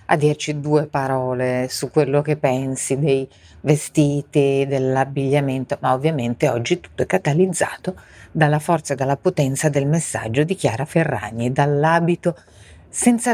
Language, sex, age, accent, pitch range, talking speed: Italian, female, 40-59, native, 135-170 Hz, 130 wpm